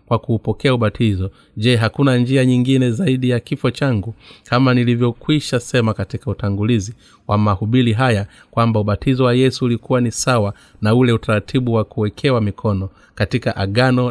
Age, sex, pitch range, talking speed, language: 30-49, male, 105-125 Hz, 145 wpm, Swahili